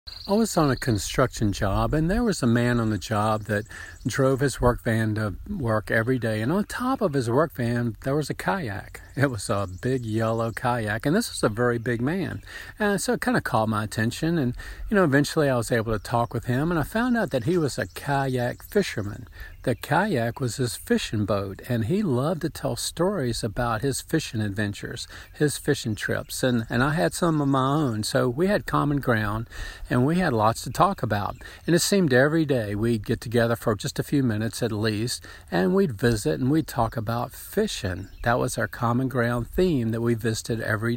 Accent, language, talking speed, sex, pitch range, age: American, English, 215 wpm, male, 115-150 Hz, 50-69